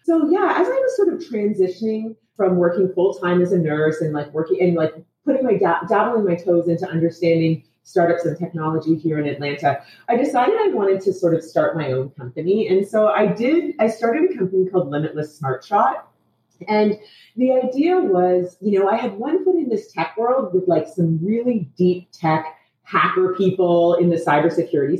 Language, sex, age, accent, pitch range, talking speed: English, female, 30-49, American, 165-235 Hz, 195 wpm